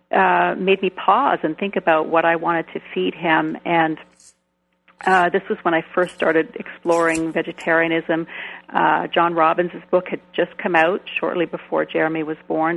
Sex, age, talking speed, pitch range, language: female, 40-59, 170 wpm, 160-170 Hz, English